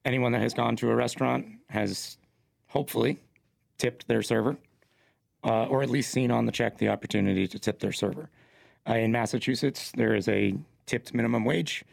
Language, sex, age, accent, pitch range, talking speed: English, male, 30-49, American, 105-125 Hz, 175 wpm